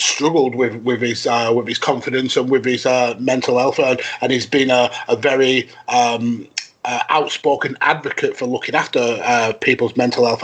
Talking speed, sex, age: 180 wpm, male, 30-49